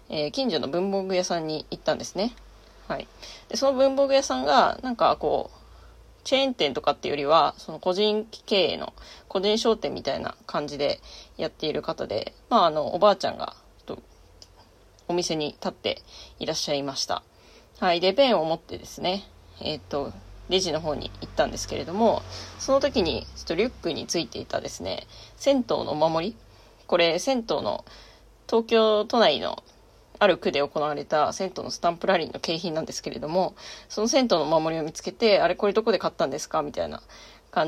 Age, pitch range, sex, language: 20-39, 155-215 Hz, female, Japanese